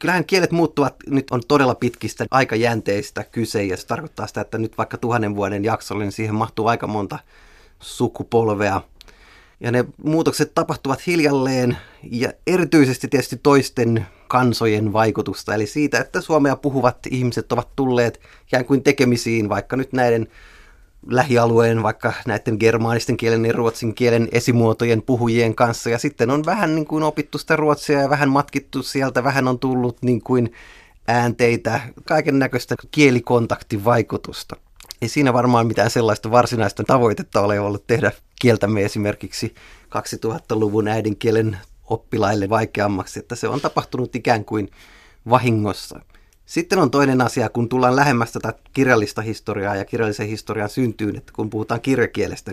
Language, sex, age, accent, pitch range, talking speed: Finnish, male, 30-49, native, 105-130 Hz, 140 wpm